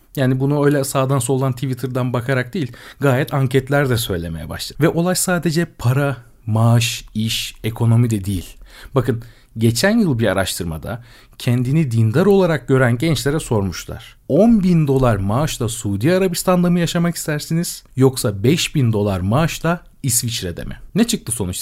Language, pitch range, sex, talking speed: Turkish, 105-140 Hz, male, 140 wpm